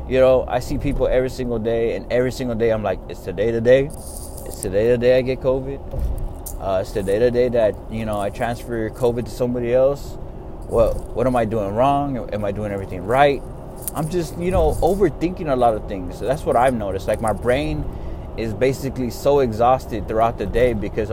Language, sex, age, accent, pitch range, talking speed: English, male, 20-39, American, 105-135 Hz, 215 wpm